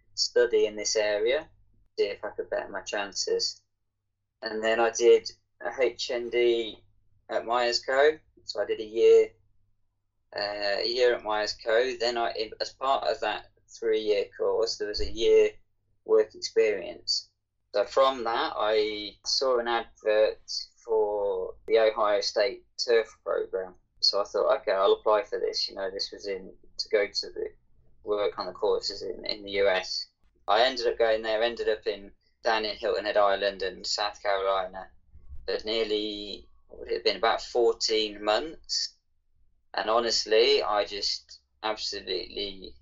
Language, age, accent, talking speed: English, 20-39, British, 155 wpm